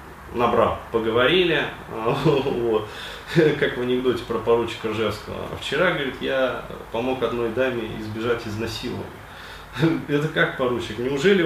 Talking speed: 110 wpm